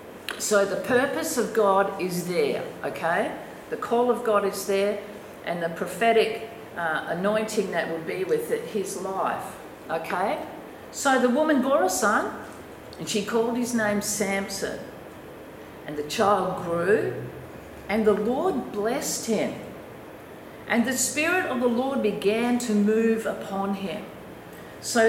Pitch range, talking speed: 195-245 Hz, 145 wpm